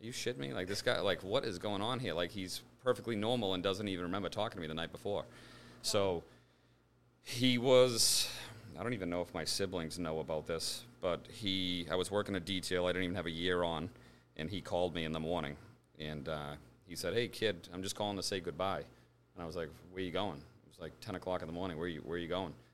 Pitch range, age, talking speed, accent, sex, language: 80-95 Hz, 40-59, 250 wpm, American, male, English